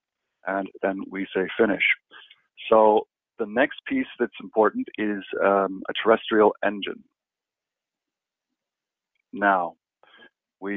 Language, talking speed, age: English, 100 wpm, 50-69